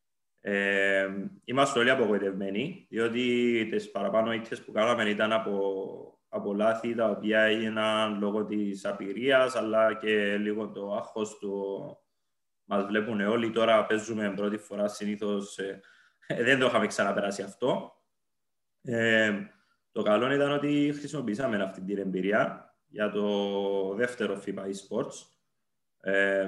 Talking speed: 125 wpm